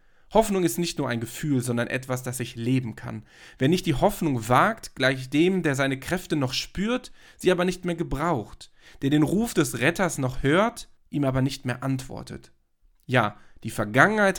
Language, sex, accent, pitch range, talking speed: German, male, German, 120-170 Hz, 185 wpm